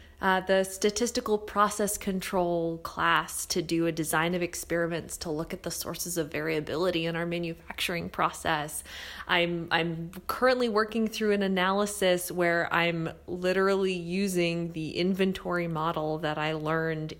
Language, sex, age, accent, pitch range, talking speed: English, female, 20-39, American, 155-190 Hz, 140 wpm